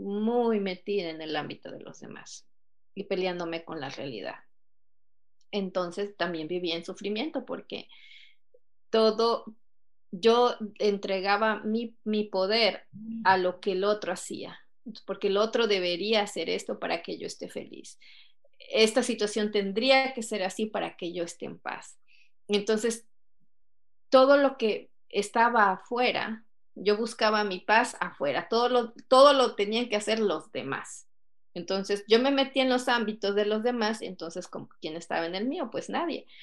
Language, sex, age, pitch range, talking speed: Spanish, female, 30-49, 185-230 Hz, 155 wpm